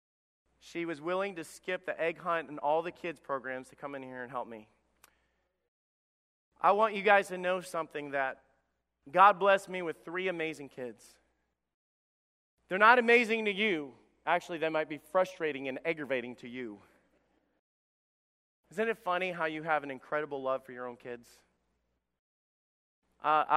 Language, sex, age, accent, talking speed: English, male, 30-49, American, 160 wpm